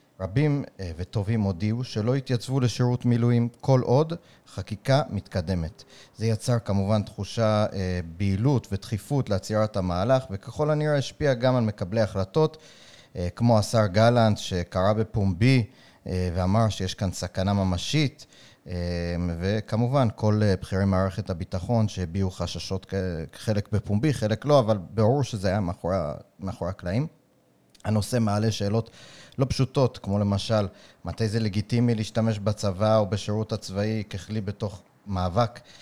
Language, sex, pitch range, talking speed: Hebrew, male, 95-120 Hz, 120 wpm